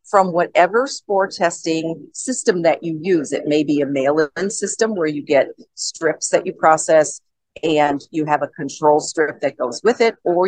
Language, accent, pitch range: English, American, 150-185 Hz